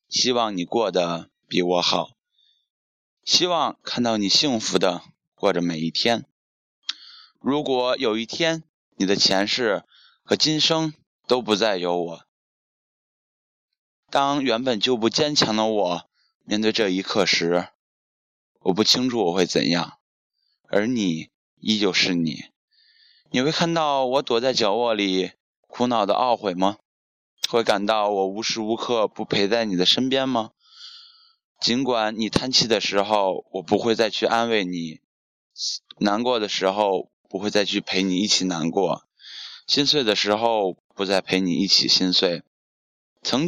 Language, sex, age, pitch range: Chinese, male, 20-39, 95-135 Hz